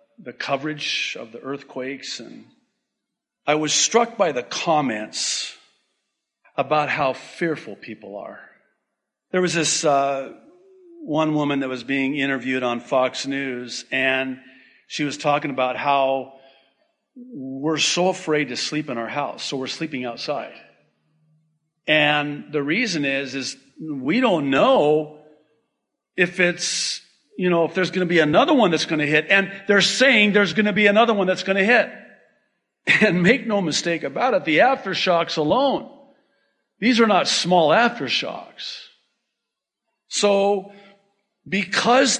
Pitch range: 145-225 Hz